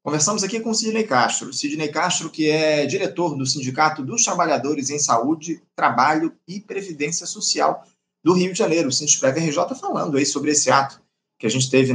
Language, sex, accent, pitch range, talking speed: Portuguese, male, Brazilian, 135-180 Hz, 195 wpm